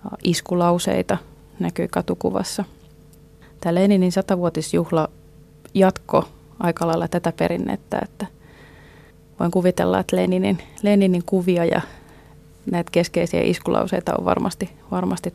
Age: 20-39